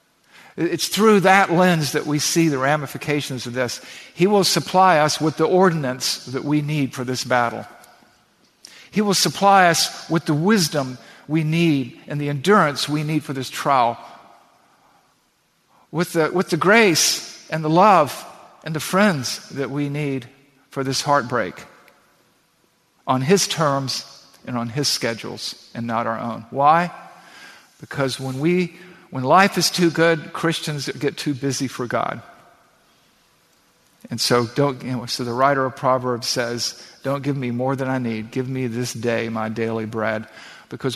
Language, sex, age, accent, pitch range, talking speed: English, male, 50-69, American, 120-160 Hz, 160 wpm